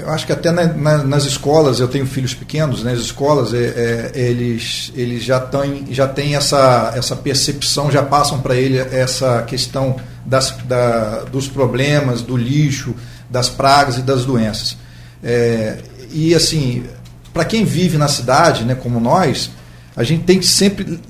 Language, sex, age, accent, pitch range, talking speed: Portuguese, male, 40-59, Brazilian, 125-170 Hz, 145 wpm